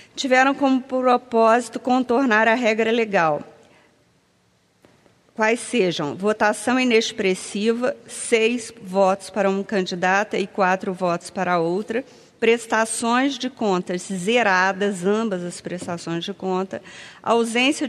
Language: Portuguese